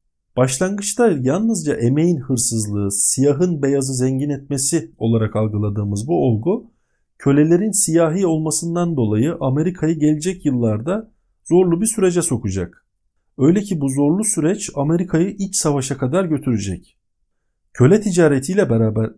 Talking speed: 115 wpm